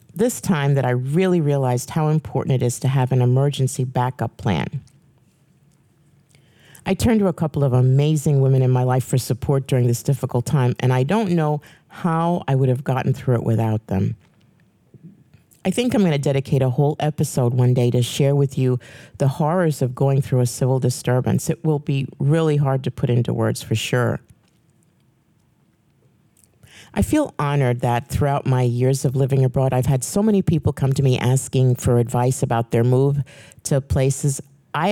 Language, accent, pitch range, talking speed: English, American, 125-150 Hz, 185 wpm